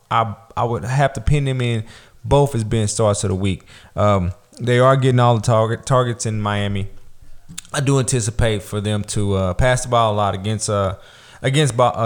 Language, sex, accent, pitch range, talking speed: English, male, American, 110-135 Hz, 205 wpm